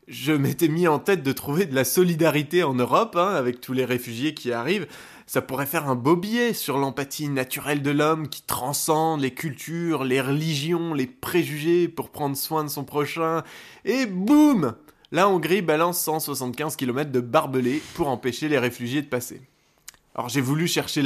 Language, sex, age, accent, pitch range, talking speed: French, male, 20-39, French, 130-180 Hz, 180 wpm